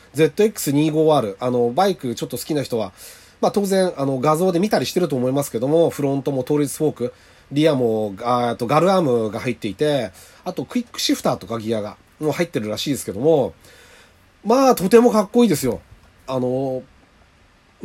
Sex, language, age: male, Japanese, 40-59